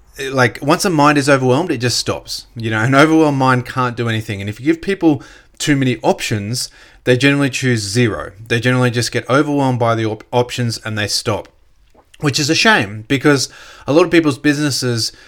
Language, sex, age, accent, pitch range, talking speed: English, male, 30-49, Australian, 115-145 Hz, 195 wpm